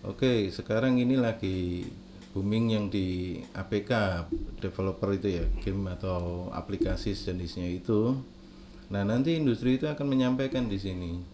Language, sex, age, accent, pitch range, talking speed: Indonesian, male, 30-49, native, 95-120 Hz, 125 wpm